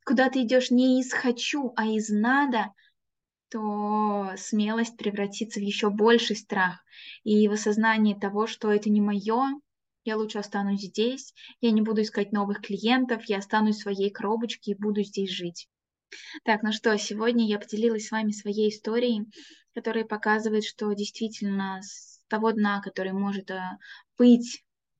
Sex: female